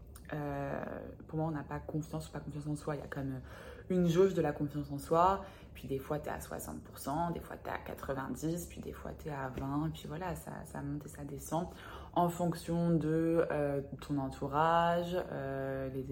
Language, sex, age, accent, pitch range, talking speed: French, female, 20-39, French, 145-175 Hz, 225 wpm